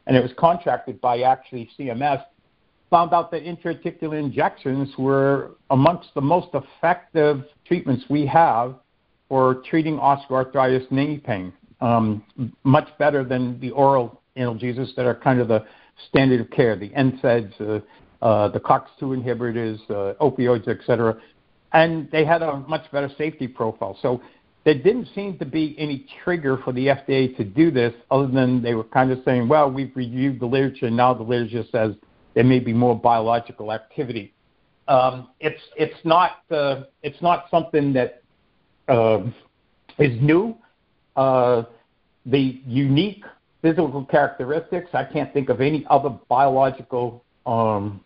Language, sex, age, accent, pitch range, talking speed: English, male, 60-79, American, 120-150 Hz, 150 wpm